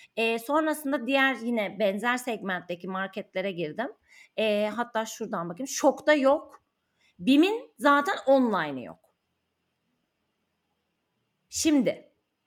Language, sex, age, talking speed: Turkish, female, 30-49, 95 wpm